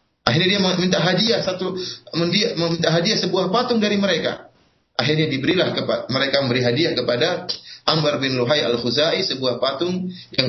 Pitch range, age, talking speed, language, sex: 135-210 Hz, 30-49, 150 wpm, Indonesian, male